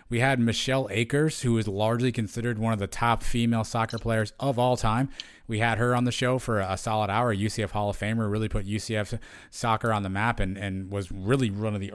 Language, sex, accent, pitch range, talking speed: English, male, American, 100-125 Hz, 230 wpm